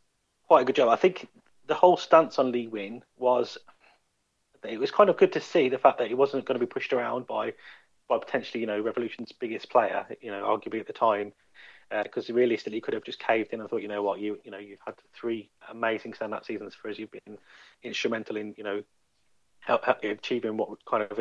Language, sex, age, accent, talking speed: English, male, 30-49, British, 225 wpm